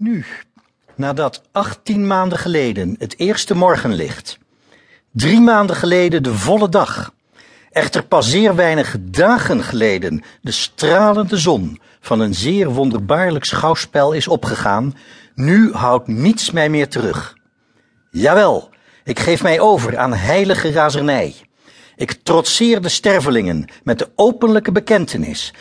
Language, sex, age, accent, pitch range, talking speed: Dutch, male, 60-79, Dutch, 135-200 Hz, 120 wpm